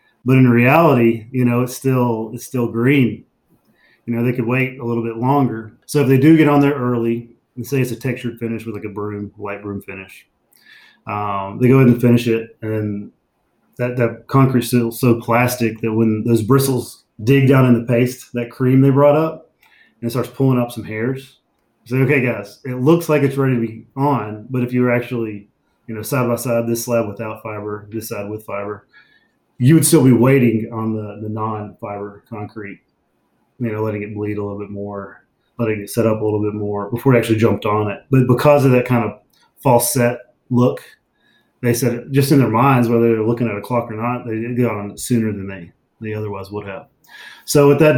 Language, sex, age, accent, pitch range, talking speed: English, male, 30-49, American, 110-125 Hz, 220 wpm